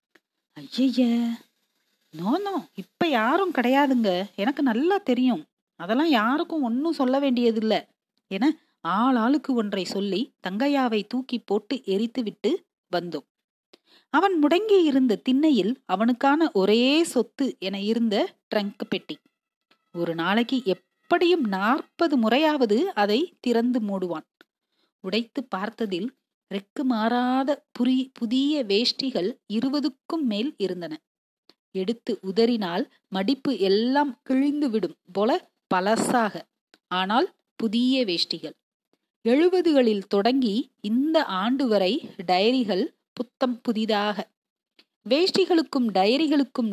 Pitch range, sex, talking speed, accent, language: 205-280 Hz, female, 85 wpm, native, Tamil